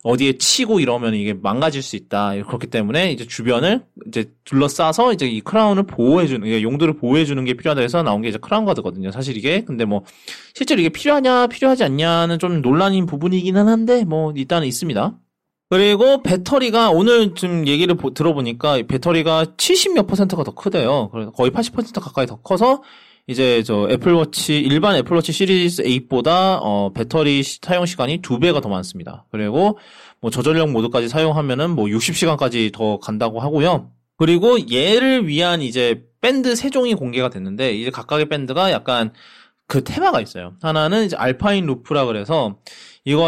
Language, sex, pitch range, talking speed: English, male, 120-190 Hz, 145 wpm